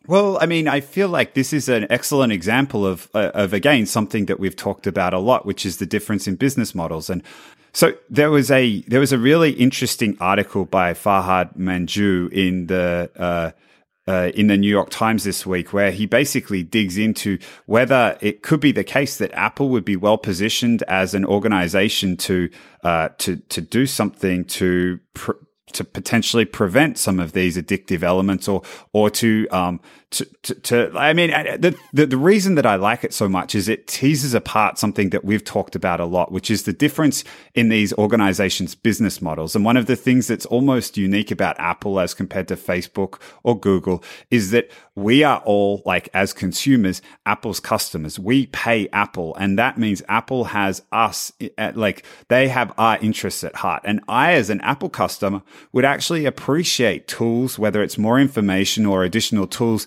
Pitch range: 95-125 Hz